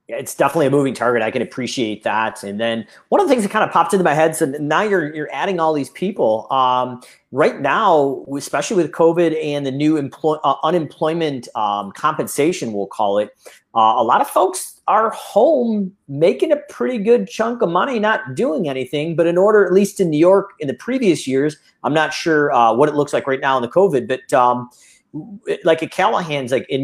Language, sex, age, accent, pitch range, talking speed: English, male, 40-59, American, 130-180 Hz, 215 wpm